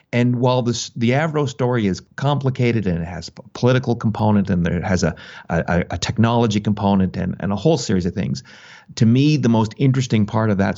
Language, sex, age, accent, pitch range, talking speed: English, male, 40-59, American, 100-125 Hz, 205 wpm